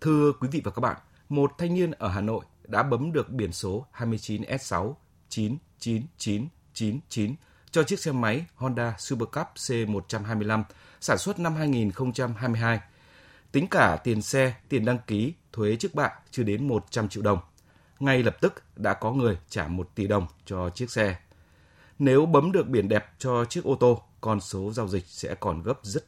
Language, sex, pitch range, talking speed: Vietnamese, male, 100-130 Hz, 180 wpm